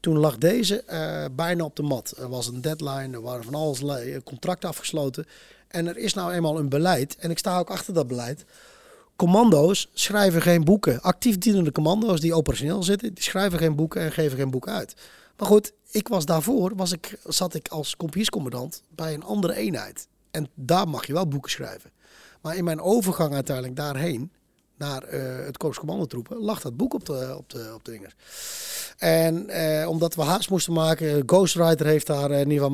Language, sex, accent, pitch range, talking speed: Dutch, male, Dutch, 145-185 Hz, 185 wpm